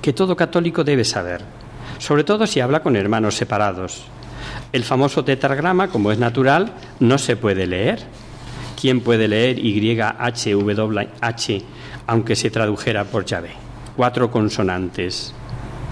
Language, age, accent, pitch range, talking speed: Spanish, 50-69, Spanish, 115-150 Hz, 125 wpm